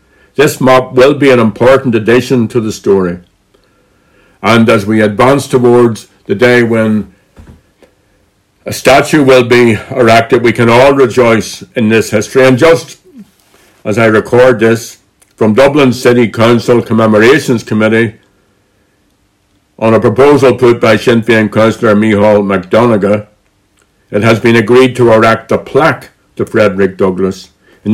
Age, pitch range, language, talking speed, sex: 60-79, 100-125 Hz, English, 135 wpm, male